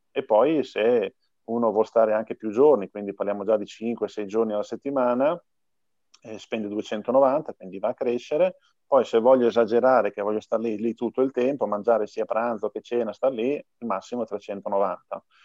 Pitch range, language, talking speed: 105-125 Hz, Italian, 180 wpm